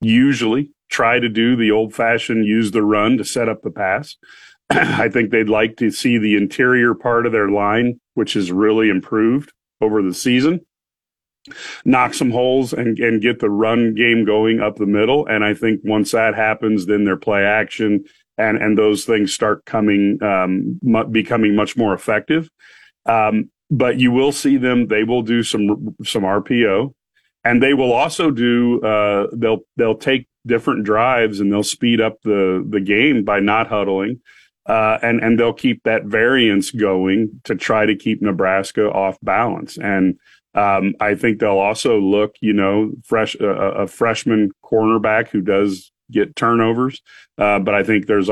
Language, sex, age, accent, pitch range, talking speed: English, male, 40-59, American, 100-115 Hz, 175 wpm